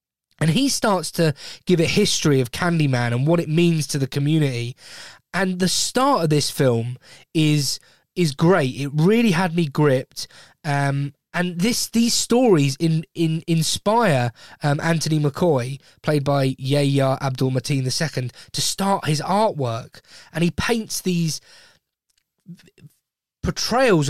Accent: British